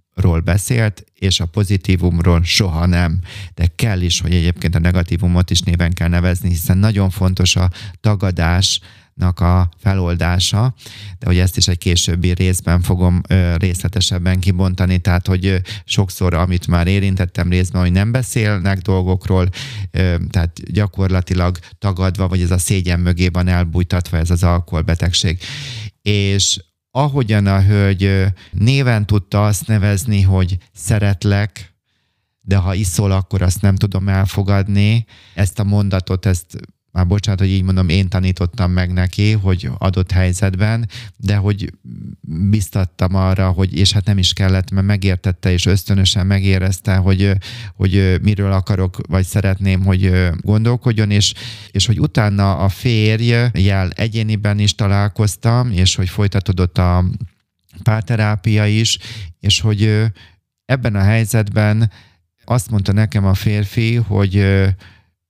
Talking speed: 130 wpm